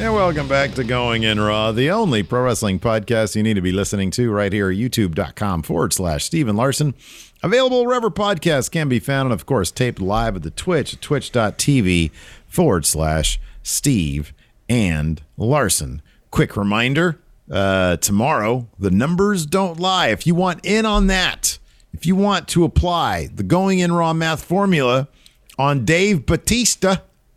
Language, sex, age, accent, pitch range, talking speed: English, male, 50-69, American, 100-160 Hz, 165 wpm